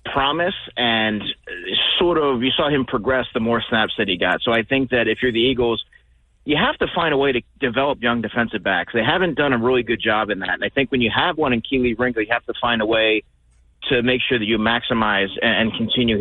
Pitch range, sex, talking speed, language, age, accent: 110-130 Hz, male, 245 wpm, English, 30-49, American